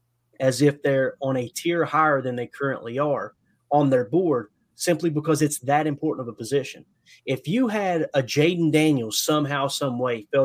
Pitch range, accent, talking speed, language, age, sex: 130-160 Hz, American, 185 wpm, English, 30-49, male